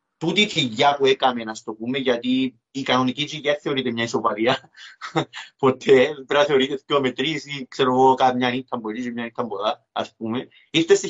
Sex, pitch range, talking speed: male, 125-170 Hz, 170 wpm